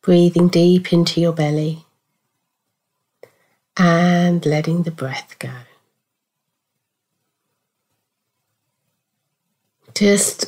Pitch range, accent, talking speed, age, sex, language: 160-180 Hz, British, 65 wpm, 40-59, female, English